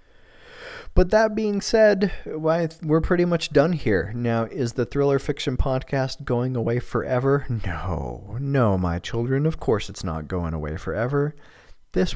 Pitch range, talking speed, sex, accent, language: 100-130 Hz, 150 wpm, male, American, English